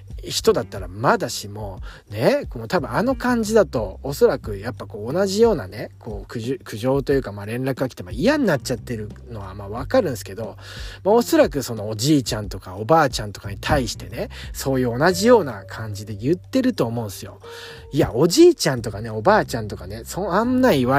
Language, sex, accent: Japanese, male, native